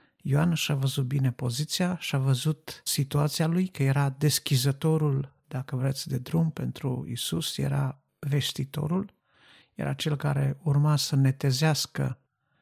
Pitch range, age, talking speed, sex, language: 135-160 Hz, 50-69, 125 wpm, male, Romanian